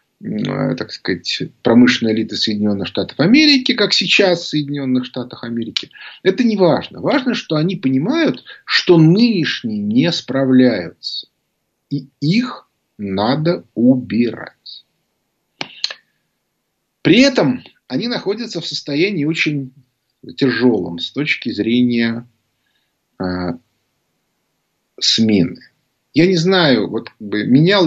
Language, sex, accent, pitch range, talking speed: Russian, male, native, 125-180 Hz, 95 wpm